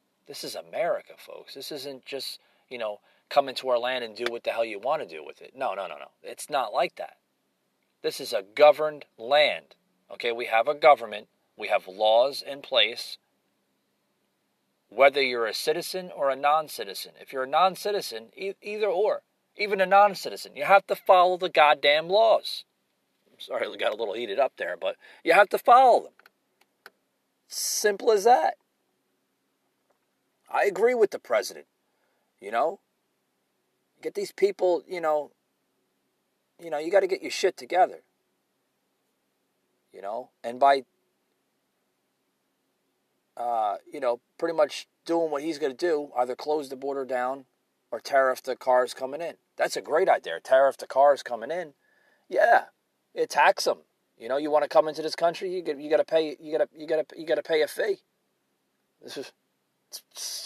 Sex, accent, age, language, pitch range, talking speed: male, American, 40-59, English, 135-200 Hz, 175 wpm